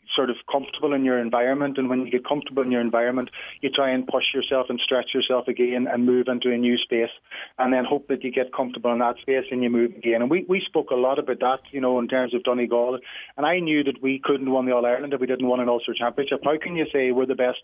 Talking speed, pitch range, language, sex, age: 275 wpm, 125-140 Hz, English, male, 30-49